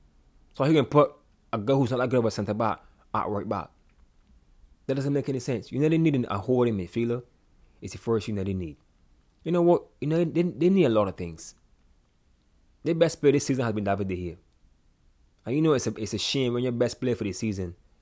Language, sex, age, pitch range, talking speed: English, male, 20-39, 85-125 Hz, 235 wpm